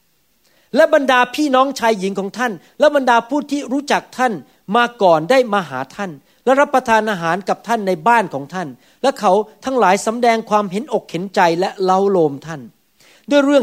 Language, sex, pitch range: Thai, male, 180-240 Hz